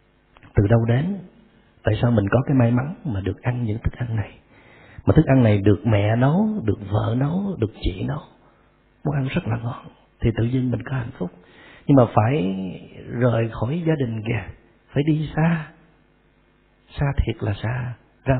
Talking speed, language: 190 wpm, Vietnamese